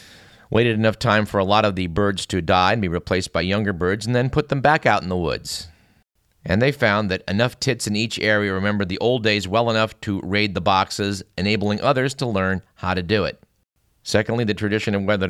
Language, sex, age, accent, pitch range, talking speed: English, male, 50-69, American, 95-115 Hz, 230 wpm